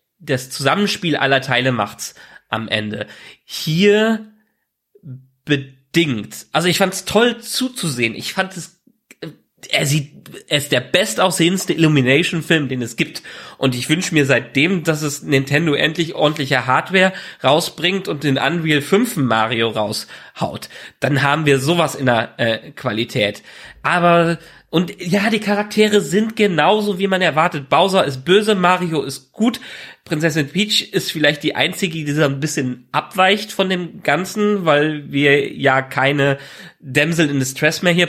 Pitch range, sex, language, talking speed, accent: 140-185 Hz, male, German, 140 wpm, German